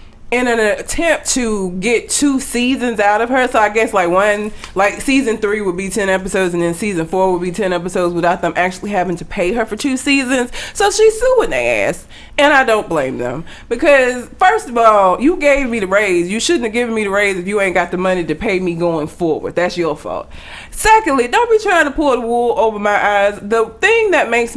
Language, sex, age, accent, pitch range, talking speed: English, female, 20-39, American, 190-290 Hz, 230 wpm